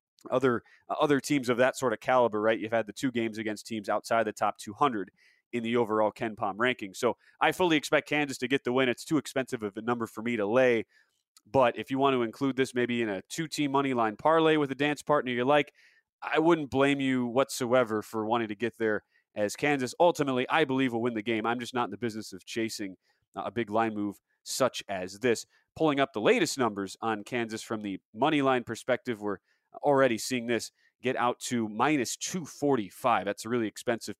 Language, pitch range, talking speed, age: English, 110-145 Hz, 220 wpm, 30-49